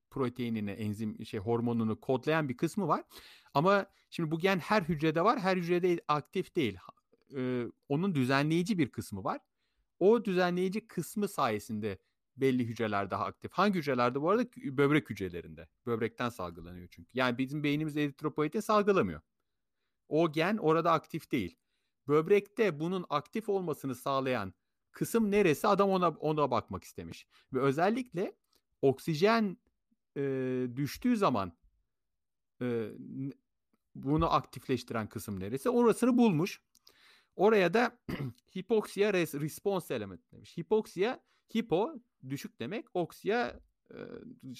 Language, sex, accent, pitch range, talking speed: Turkish, male, native, 120-190 Hz, 120 wpm